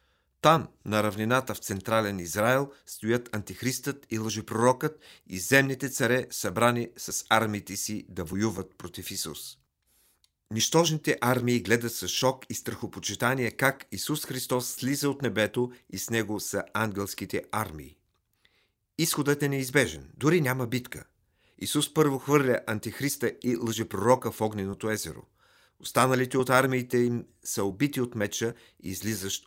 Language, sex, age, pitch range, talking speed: Bulgarian, male, 50-69, 100-130 Hz, 130 wpm